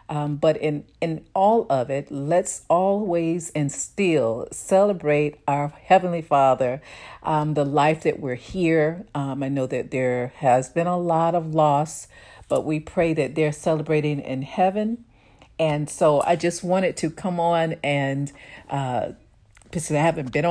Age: 50-69